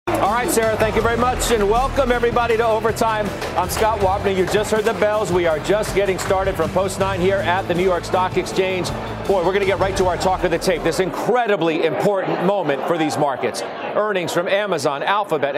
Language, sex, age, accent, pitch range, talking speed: English, male, 40-59, American, 155-200 Hz, 225 wpm